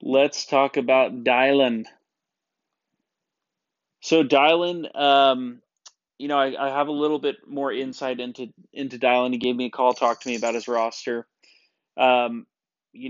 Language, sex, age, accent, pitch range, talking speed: English, male, 20-39, American, 120-135 Hz, 150 wpm